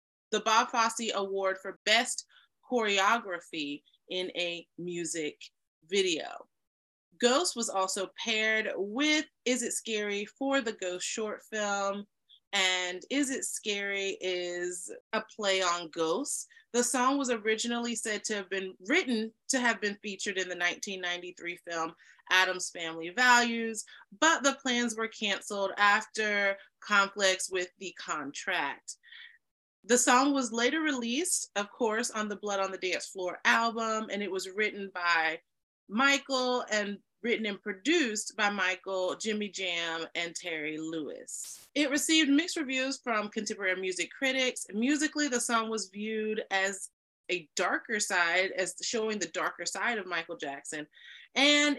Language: English